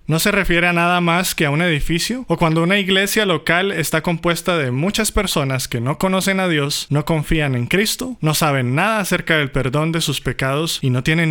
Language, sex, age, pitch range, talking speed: Spanish, male, 20-39, 135-165 Hz, 220 wpm